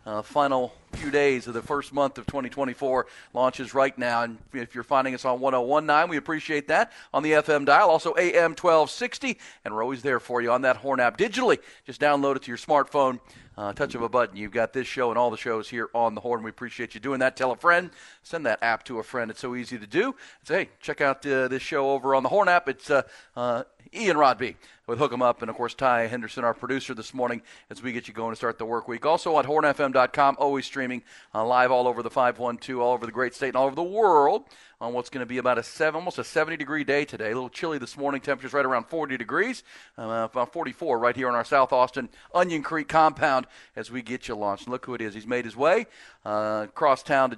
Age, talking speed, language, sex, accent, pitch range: 40-59, 250 wpm, English, male, American, 120-145 Hz